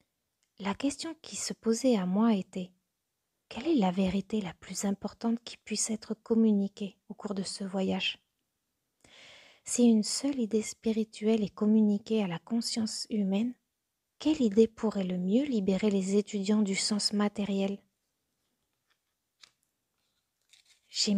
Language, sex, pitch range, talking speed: French, female, 195-235 Hz, 135 wpm